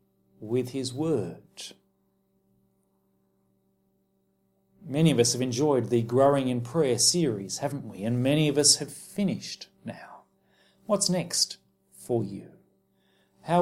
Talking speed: 120 wpm